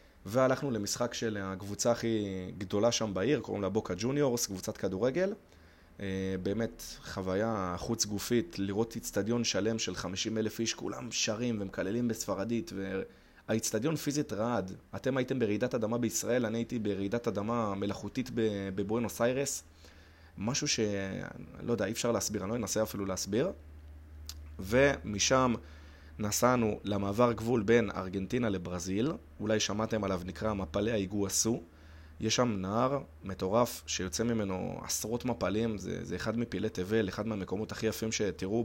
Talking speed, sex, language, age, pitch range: 135 wpm, male, Hebrew, 20-39, 95-115 Hz